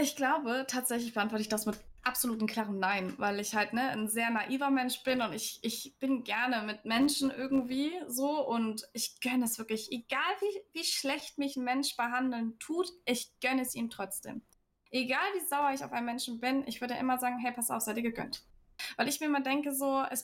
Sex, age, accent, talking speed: female, 20-39, German, 215 wpm